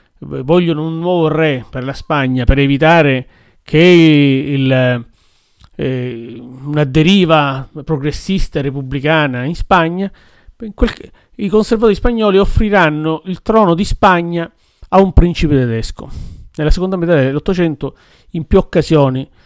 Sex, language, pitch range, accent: male, Italian, 125-155 Hz, native